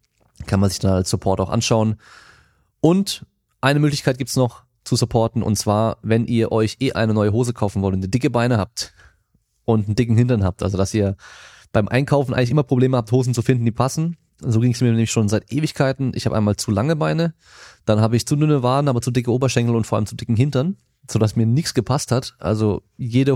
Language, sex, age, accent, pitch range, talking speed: German, male, 30-49, German, 105-130 Hz, 225 wpm